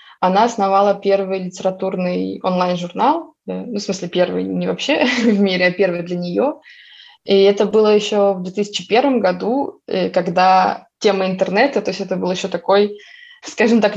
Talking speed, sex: 150 wpm, female